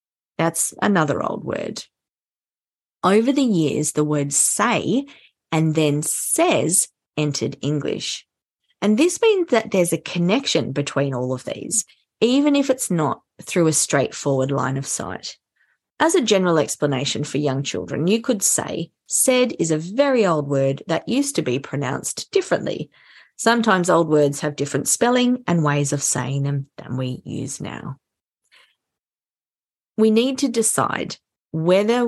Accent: Australian